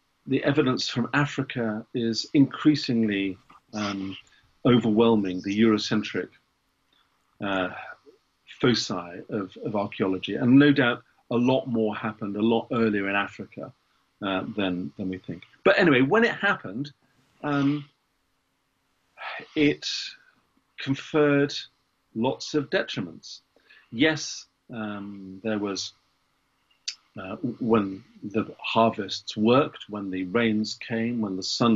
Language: English